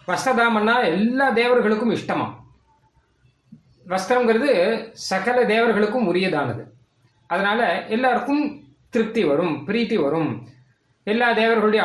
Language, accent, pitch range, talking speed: Tamil, native, 145-230 Hz, 80 wpm